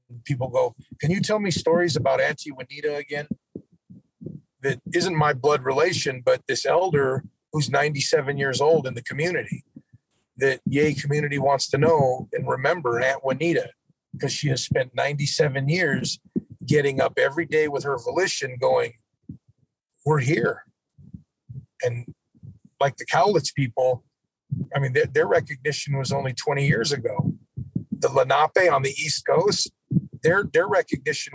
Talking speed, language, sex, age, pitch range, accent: 145 wpm, English, male, 40-59, 140-170 Hz, American